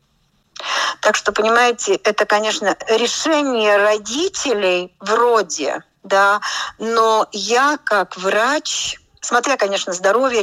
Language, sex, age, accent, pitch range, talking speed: Russian, female, 40-59, native, 180-235 Hz, 90 wpm